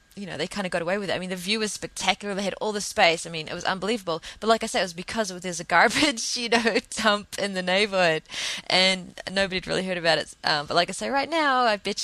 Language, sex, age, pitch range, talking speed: English, female, 20-39, 175-220 Hz, 285 wpm